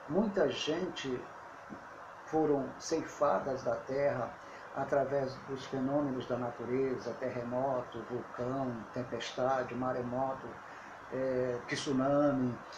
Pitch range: 135-170 Hz